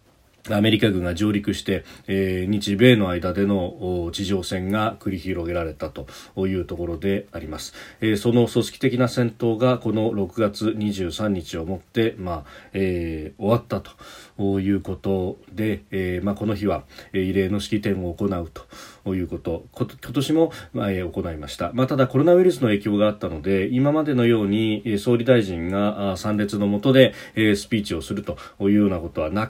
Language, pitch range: Japanese, 95-115 Hz